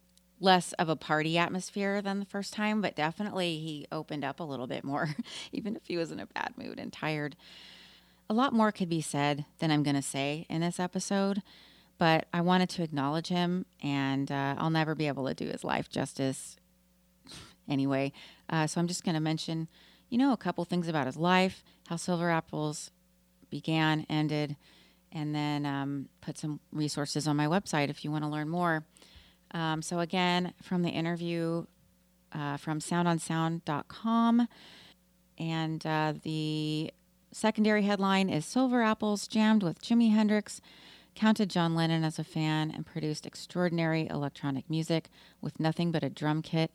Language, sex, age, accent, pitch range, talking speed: English, female, 30-49, American, 145-180 Hz, 170 wpm